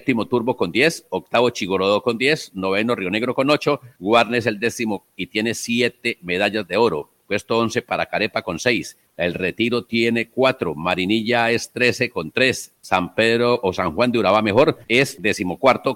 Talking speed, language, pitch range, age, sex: 175 wpm, Spanish, 105-125 Hz, 50-69, male